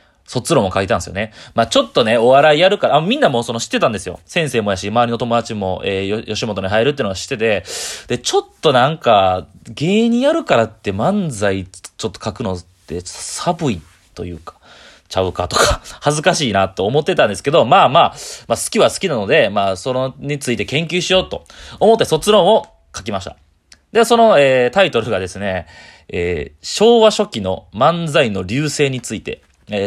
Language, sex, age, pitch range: Japanese, male, 20-39, 95-150 Hz